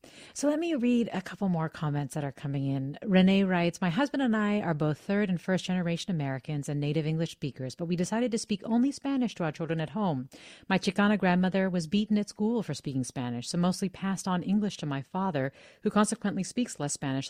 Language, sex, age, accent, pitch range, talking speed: English, female, 40-59, American, 150-195 Hz, 220 wpm